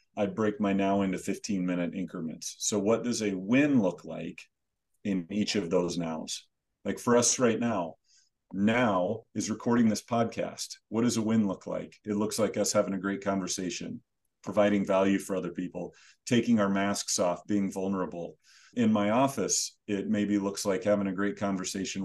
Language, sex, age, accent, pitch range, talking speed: English, male, 40-59, American, 95-110 Hz, 175 wpm